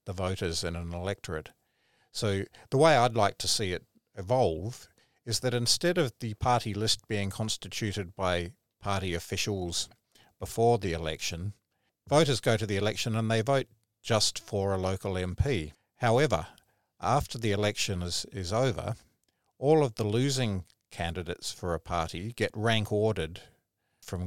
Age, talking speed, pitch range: 50-69, 150 wpm, 90-110 Hz